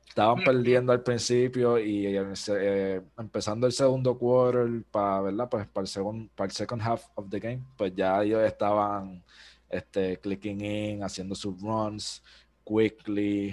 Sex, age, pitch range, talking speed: male, 20-39, 100-125 Hz, 155 wpm